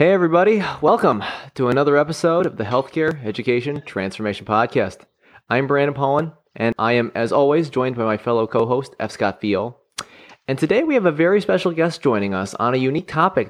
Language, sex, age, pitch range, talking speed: English, male, 30-49, 105-130 Hz, 185 wpm